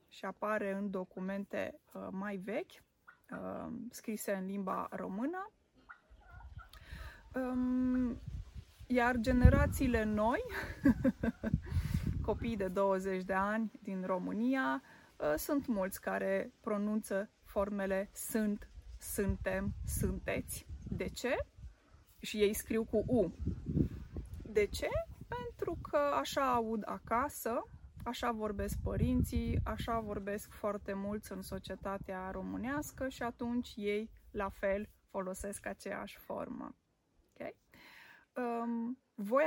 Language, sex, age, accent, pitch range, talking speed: Romanian, female, 20-39, native, 195-240 Hz, 95 wpm